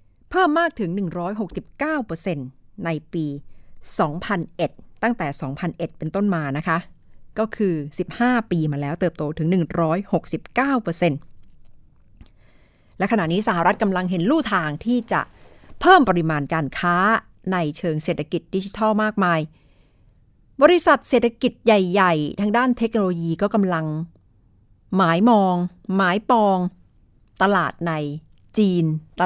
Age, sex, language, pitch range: 60-79, female, Thai, 160-215 Hz